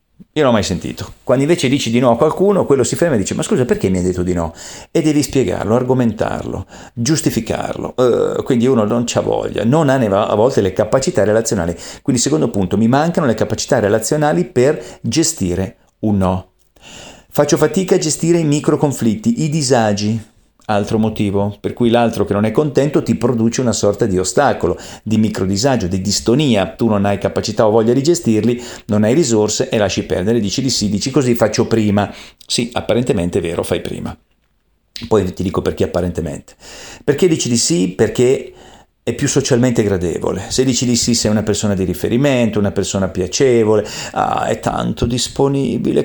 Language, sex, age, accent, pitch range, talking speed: Italian, male, 40-59, native, 105-140 Hz, 185 wpm